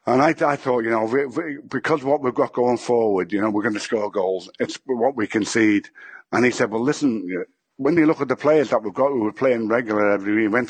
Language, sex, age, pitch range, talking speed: English, male, 60-79, 105-125 Hz, 265 wpm